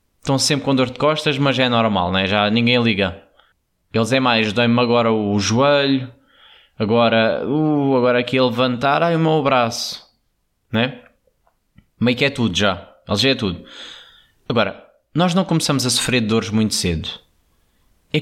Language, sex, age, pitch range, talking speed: Portuguese, male, 20-39, 100-125 Hz, 180 wpm